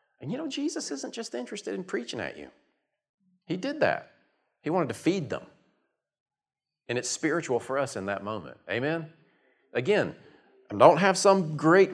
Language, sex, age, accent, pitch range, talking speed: English, male, 40-59, American, 105-165 Hz, 170 wpm